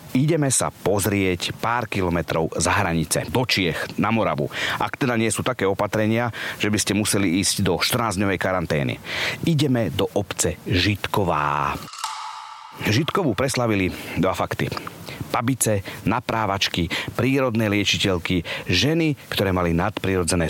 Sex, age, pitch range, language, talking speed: male, 30-49, 90-125 Hz, Slovak, 120 wpm